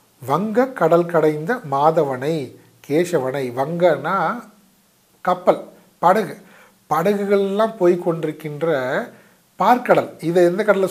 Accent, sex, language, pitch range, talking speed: native, male, Tamil, 140-200 Hz, 85 wpm